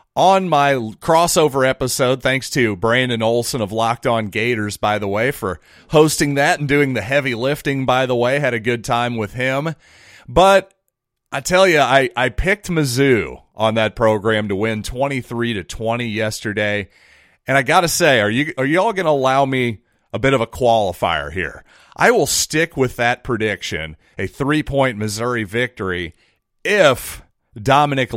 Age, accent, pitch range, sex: 30-49, American, 105-135 Hz, male